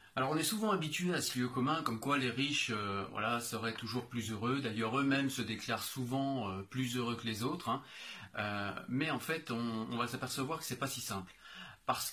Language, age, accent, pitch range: French, 30-49, French, 115-140 Hz